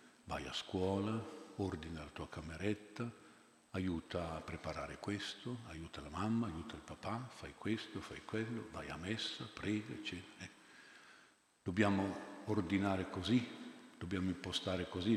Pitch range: 85-110 Hz